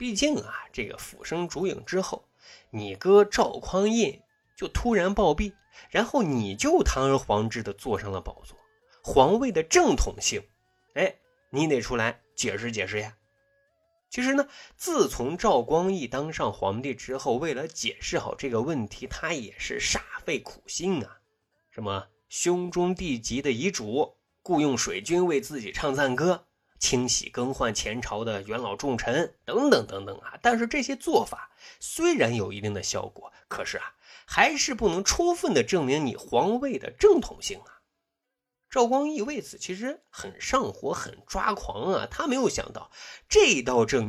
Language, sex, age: Chinese, male, 20-39